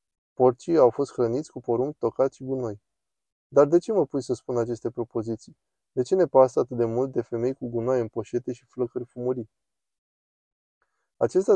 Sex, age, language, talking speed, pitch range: male, 20-39, Romanian, 180 wpm, 120-140 Hz